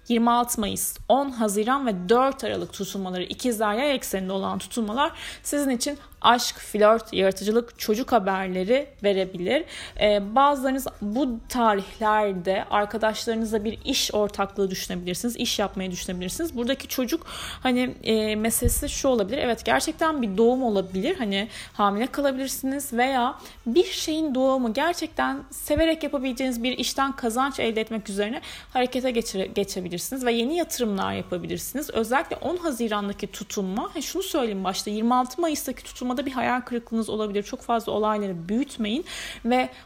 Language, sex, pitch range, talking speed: Turkish, female, 205-270 Hz, 130 wpm